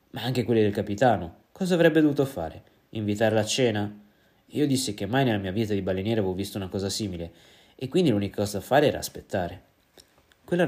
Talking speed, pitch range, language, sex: 195 wpm, 100-135 Hz, Italian, male